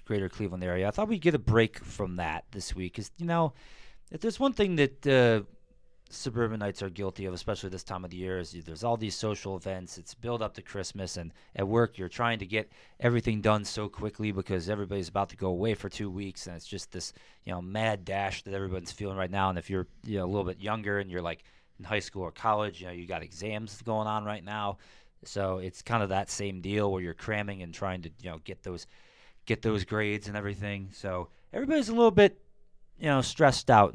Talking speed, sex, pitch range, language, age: 235 wpm, male, 95-120 Hz, English, 30-49